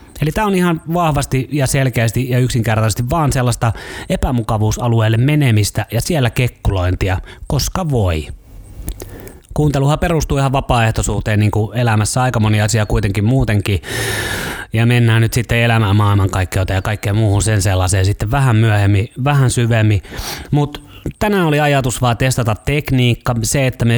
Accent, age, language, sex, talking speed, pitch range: native, 30-49, Finnish, male, 140 wpm, 105-130 Hz